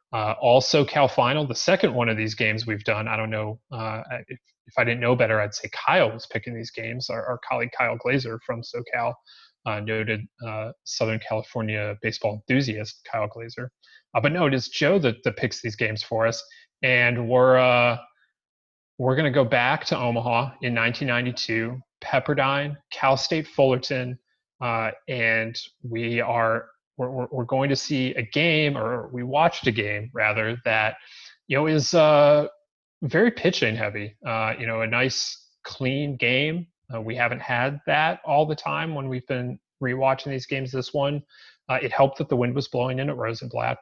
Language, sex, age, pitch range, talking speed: English, male, 30-49, 115-140 Hz, 180 wpm